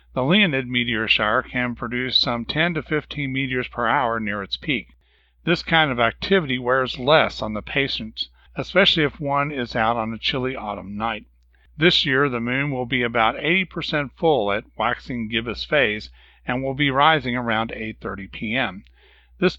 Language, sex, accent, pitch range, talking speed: English, male, American, 110-150 Hz, 170 wpm